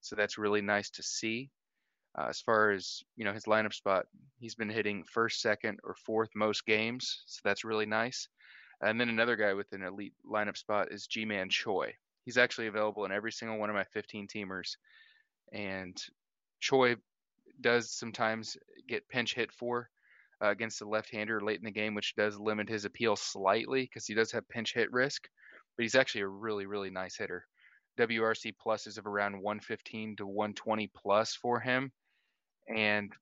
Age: 20-39